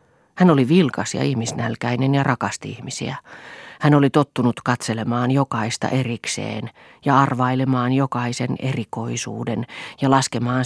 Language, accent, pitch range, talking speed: Finnish, native, 120-140 Hz, 115 wpm